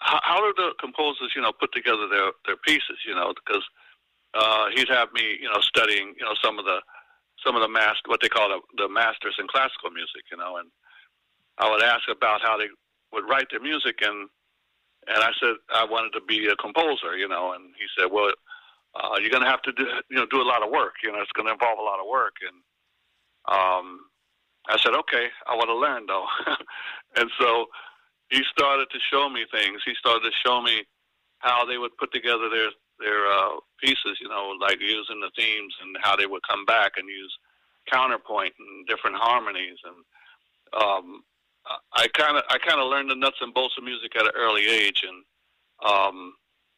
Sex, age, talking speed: male, 60-79, 205 wpm